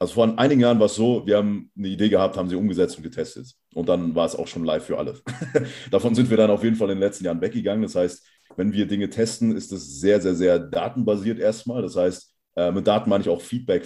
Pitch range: 90-110 Hz